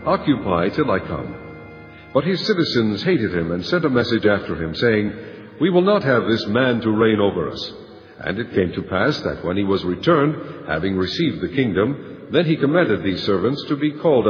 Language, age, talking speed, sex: English, 60-79, 200 wpm, male